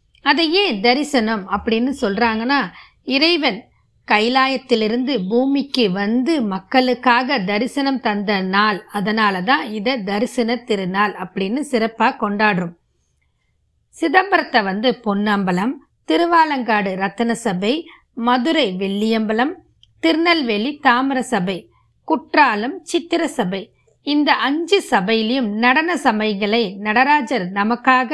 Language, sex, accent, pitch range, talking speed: Tamil, female, native, 215-270 Hz, 60 wpm